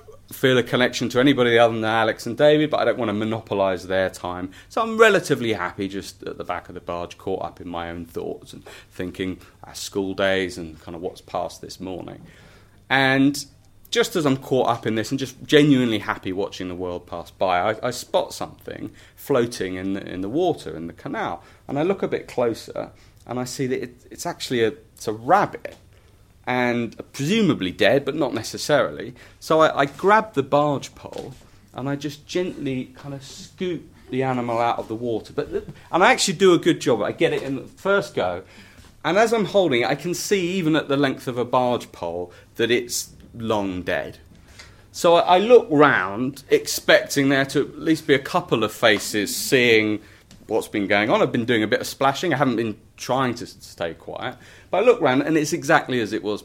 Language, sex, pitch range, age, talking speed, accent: English, male, 100-140 Hz, 30-49, 205 wpm, British